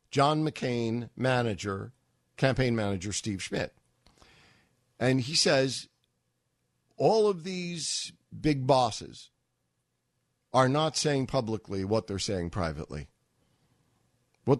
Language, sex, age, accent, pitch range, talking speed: English, male, 50-69, American, 105-145 Hz, 100 wpm